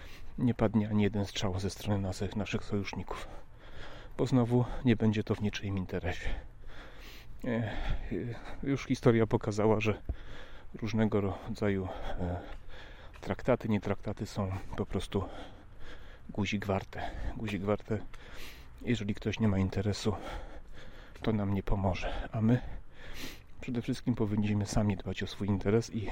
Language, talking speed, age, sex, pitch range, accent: Polish, 120 wpm, 40-59, male, 95-115 Hz, native